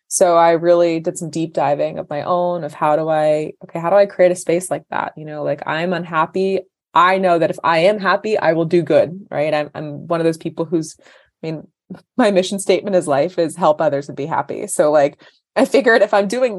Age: 20-39